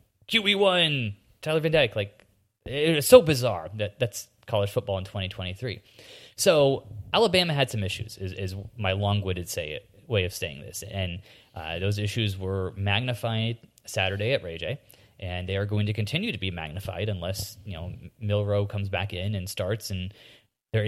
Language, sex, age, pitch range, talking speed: English, male, 20-39, 100-115 Hz, 170 wpm